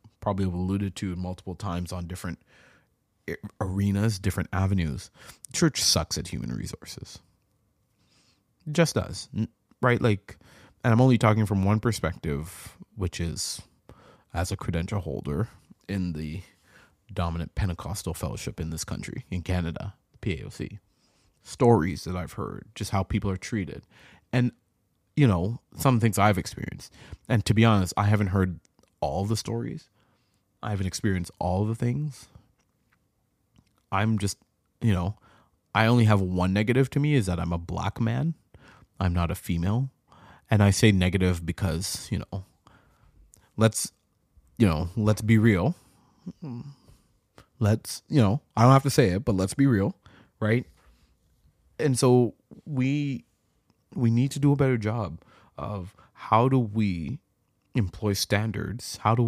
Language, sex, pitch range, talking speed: English, male, 90-115 Hz, 145 wpm